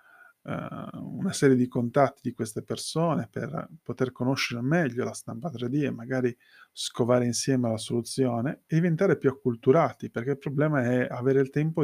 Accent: native